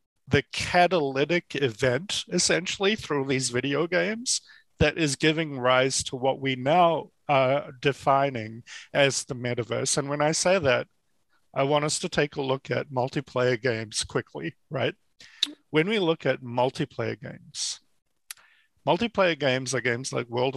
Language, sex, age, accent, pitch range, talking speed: English, male, 50-69, American, 125-150 Hz, 145 wpm